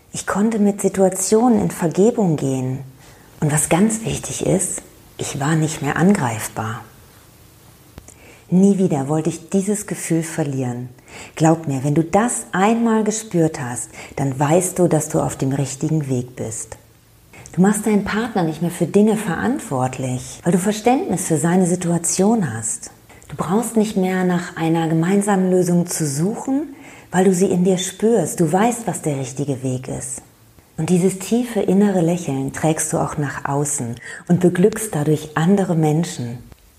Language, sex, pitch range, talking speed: German, female, 135-190 Hz, 155 wpm